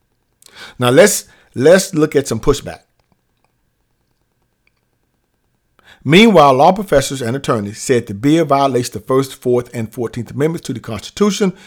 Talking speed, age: 130 wpm, 50-69